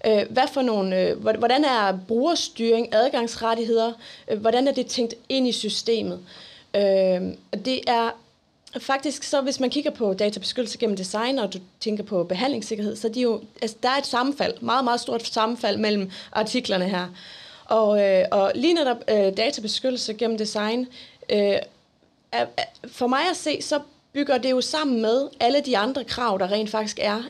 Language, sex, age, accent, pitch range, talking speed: Danish, female, 20-39, native, 205-260 Hz, 155 wpm